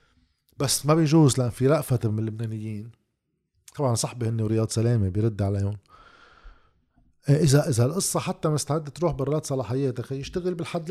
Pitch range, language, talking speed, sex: 130-175 Hz, Arabic, 140 wpm, male